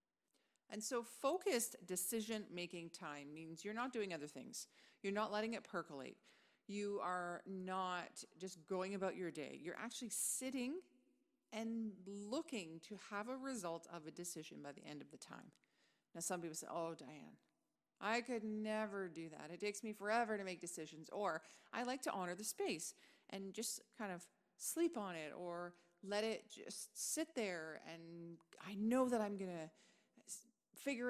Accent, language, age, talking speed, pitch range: American, English, 40-59, 170 wpm, 180-230 Hz